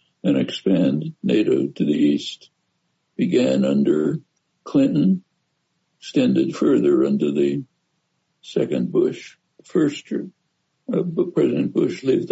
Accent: American